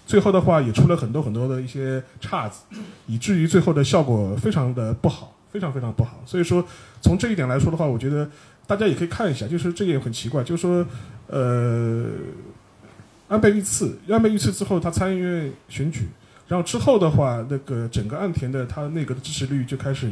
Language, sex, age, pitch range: Chinese, male, 30-49, 120-180 Hz